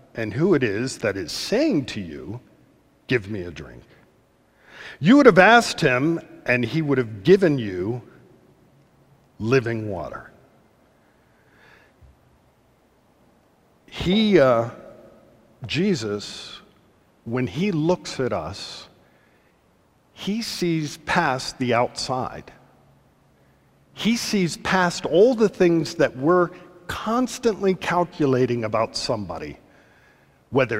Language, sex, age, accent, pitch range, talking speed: English, male, 50-69, American, 130-185 Hz, 100 wpm